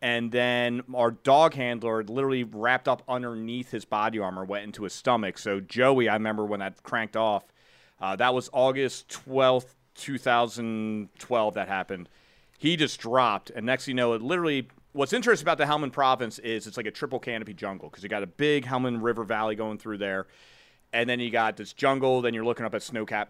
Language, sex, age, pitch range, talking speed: English, male, 30-49, 105-125 Hz, 200 wpm